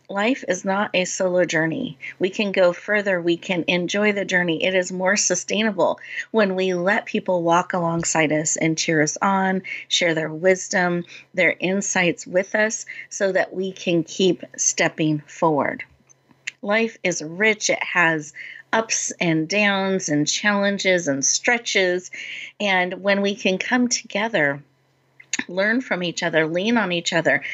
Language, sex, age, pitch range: English, female, 40-59, 170-205 Hz